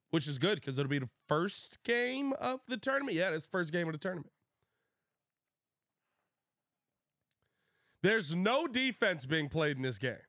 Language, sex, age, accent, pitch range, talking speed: English, male, 20-39, American, 125-165 Hz, 165 wpm